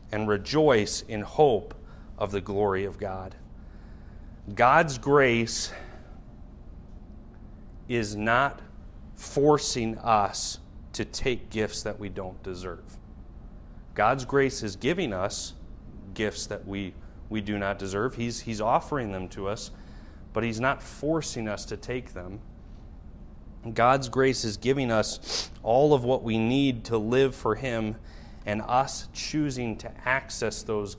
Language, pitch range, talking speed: English, 100-125 Hz, 130 wpm